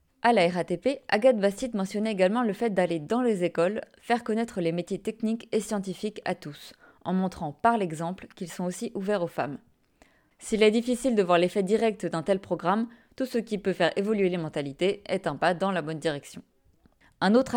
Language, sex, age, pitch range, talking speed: French, female, 20-39, 175-220 Hz, 200 wpm